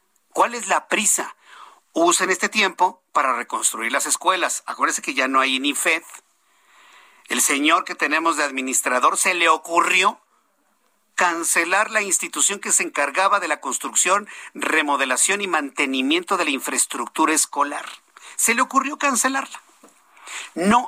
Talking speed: 140 wpm